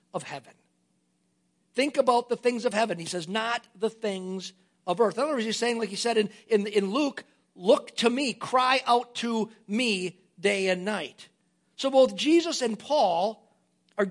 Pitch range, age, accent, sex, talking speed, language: 185-255 Hz, 50-69, American, male, 185 wpm, English